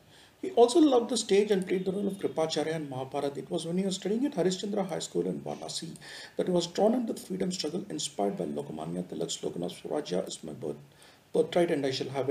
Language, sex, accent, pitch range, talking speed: English, male, Indian, 145-200 Hz, 230 wpm